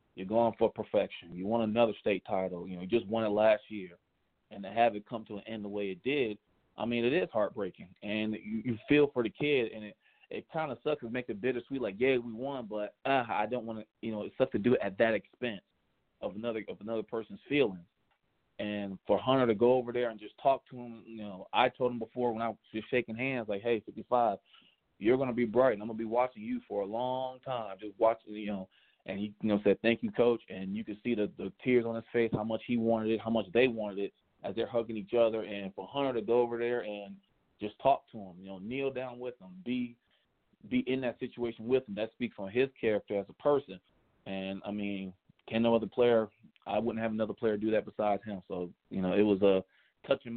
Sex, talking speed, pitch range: male, 255 wpm, 105-120 Hz